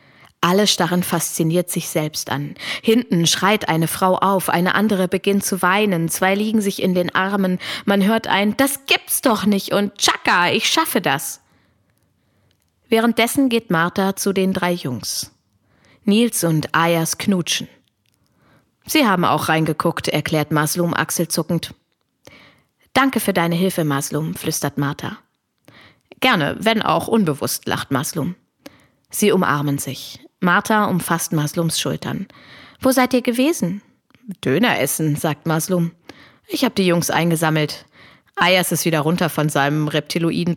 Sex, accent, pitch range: female, German, 155-210 Hz